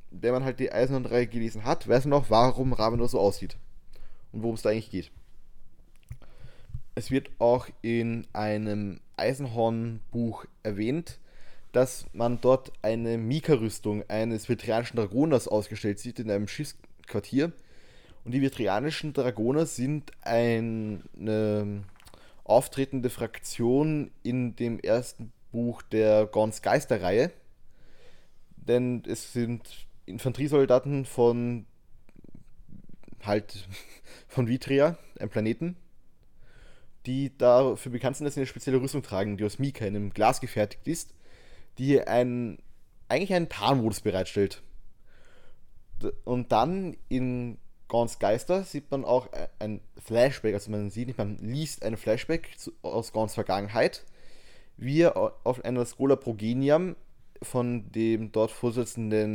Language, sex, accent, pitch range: German, male, German, 105-130 Hz